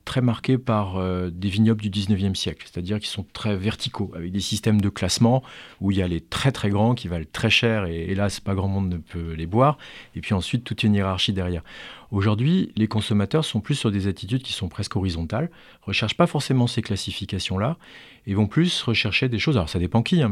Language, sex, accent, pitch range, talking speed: French, male, French, 95-115 Hz, 220 wpm